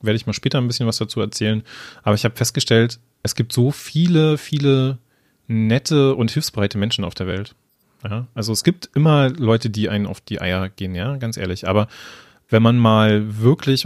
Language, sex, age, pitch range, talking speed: German, male, 30-49, 105-130 Hz, 195 wpm